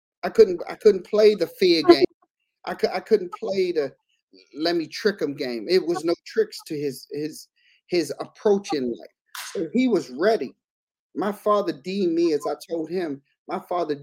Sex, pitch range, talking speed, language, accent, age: male, 150-225 Hz, 185 wpm, English, American, 40-59